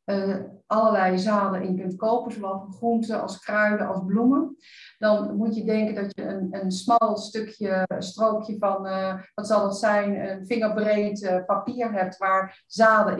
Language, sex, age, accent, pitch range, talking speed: Dutch, female, 40-59, Dutch, 190-225 Hz, 165 wpm